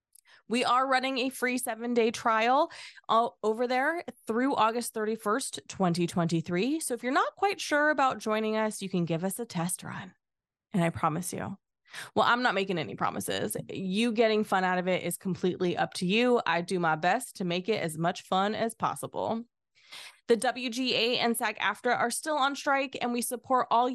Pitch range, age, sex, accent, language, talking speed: 190-240 Hz, 20-39, female, American, English, 185 wpm